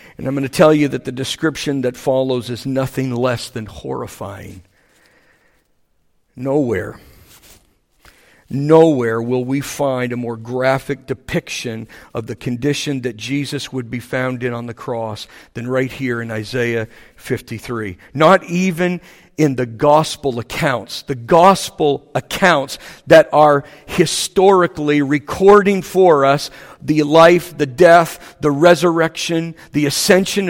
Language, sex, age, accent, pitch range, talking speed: English, male, 50-69, American, 125-170 Hz, 130 wpm